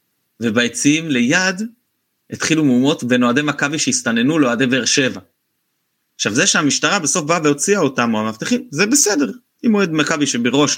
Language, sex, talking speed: Hebrew, male, 150 wpm